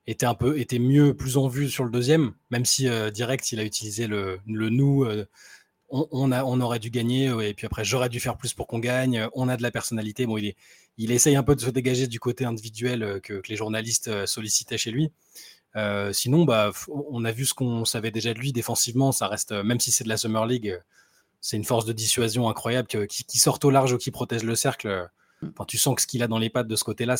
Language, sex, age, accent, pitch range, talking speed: French, male, 20-39, French, 110-135 Hz, 255 wpm